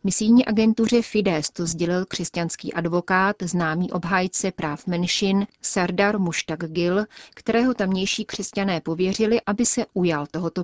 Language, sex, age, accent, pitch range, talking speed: Czech, female, 30-49, native, 170-200 Hz, 125 wpm